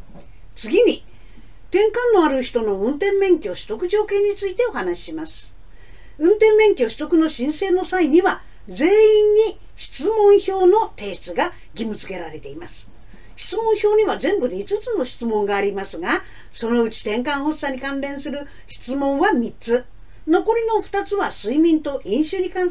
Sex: female